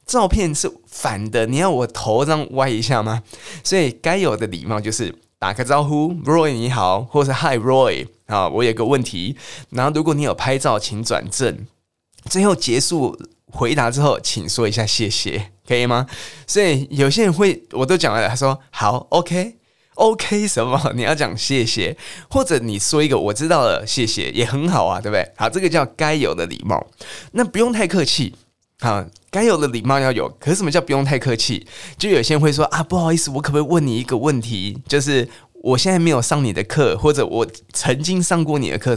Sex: male